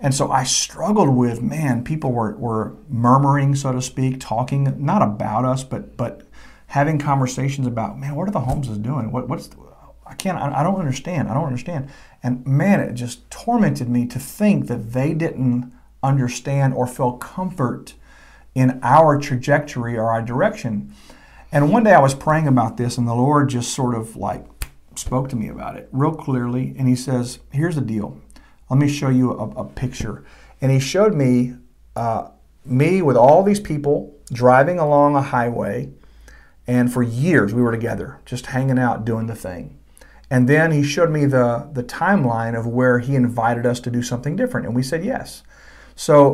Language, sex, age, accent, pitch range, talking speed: English, male, 50-69, American, 120-145 Hz, 185 wpm